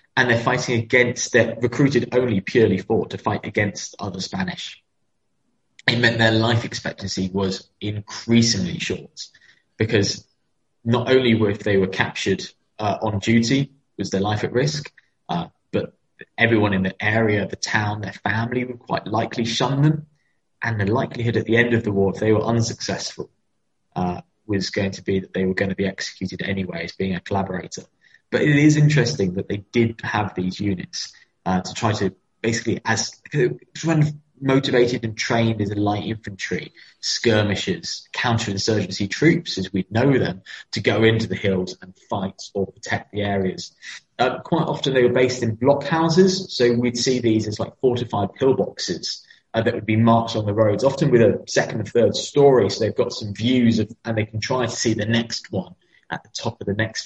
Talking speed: 190 wpm